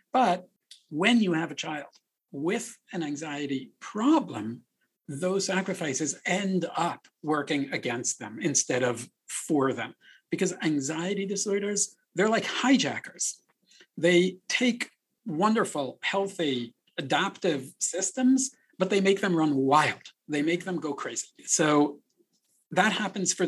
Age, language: 50-69, English